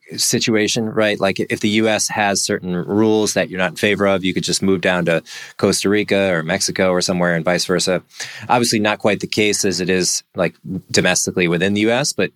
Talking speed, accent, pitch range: 215 wpm, American, 90-105 Hz